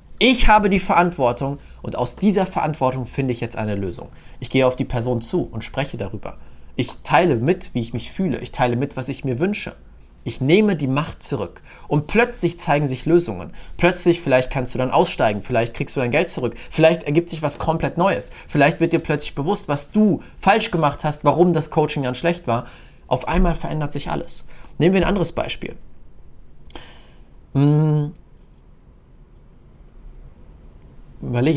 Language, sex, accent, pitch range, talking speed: German, male, German, 120-175 Hz, 175 wpm